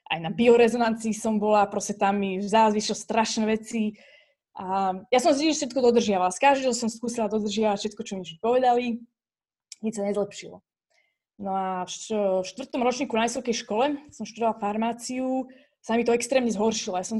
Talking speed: 170 wpm